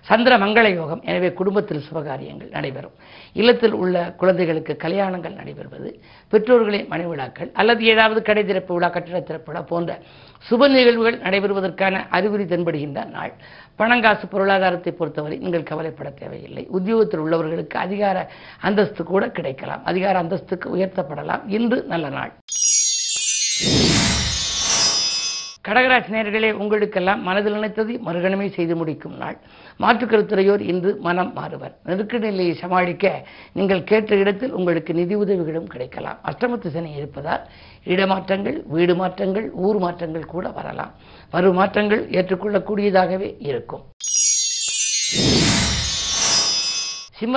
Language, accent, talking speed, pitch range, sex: Tamil, native, 100 wpm, 170-210 Hz, female